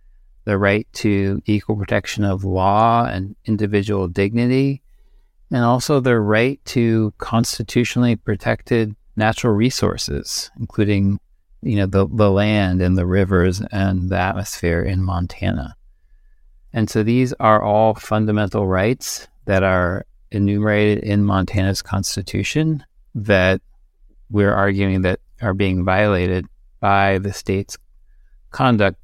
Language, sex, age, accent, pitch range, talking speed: English, male, 40-59, American, 95-115 Hz, 120 wpm